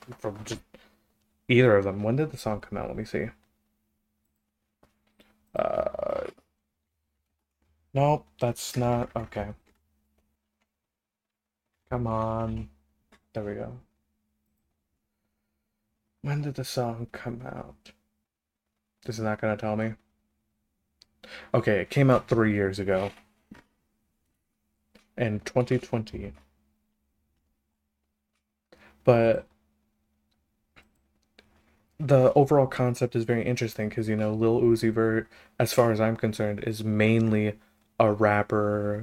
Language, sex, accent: English, male, American